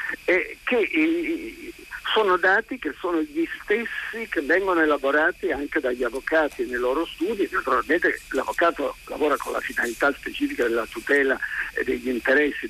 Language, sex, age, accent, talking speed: Italian, male, 50-69, native, 130 wpm